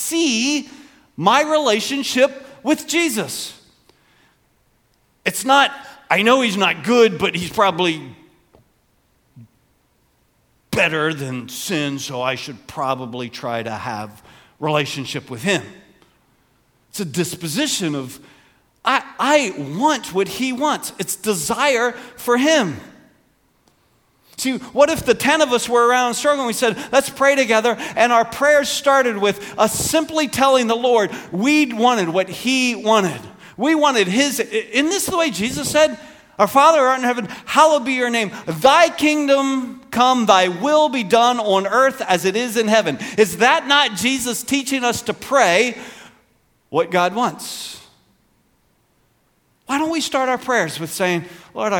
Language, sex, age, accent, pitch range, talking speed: English, male, 50-69, American, 180-275 Hz, 145 wpm